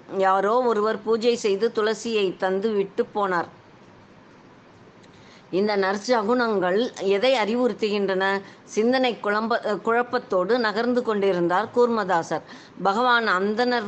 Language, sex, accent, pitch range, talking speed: Tamil, female, native, 195-235 Hz, 85 wpm